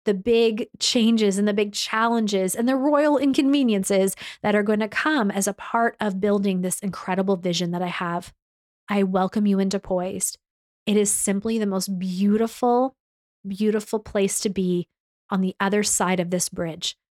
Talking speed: 170 wpm